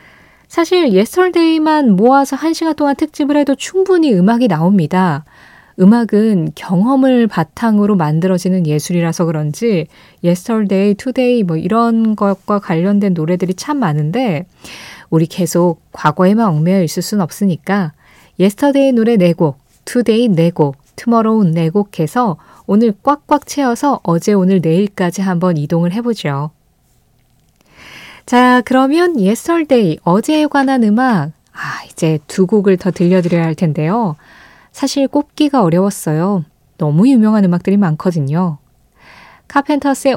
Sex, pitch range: female, 170-240 Hz